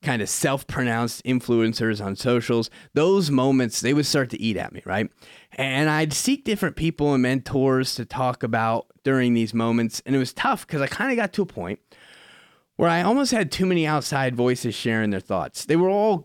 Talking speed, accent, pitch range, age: 205 wpm, American, 120-155 Hz, 20-39